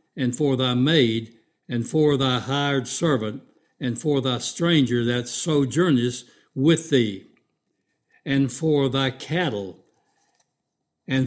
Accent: American